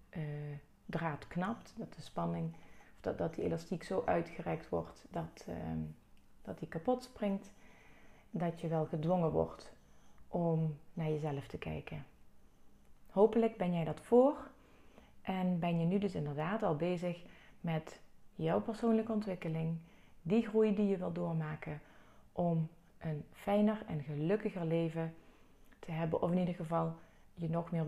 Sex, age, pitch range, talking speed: female, 30-49, 155-205 Hz, 145 wpm